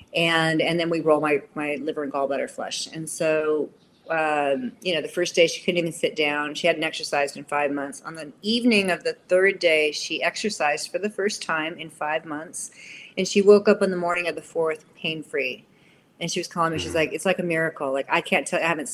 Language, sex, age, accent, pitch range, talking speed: English, female, 30-49, American, 160-195 Hz, 235 wpm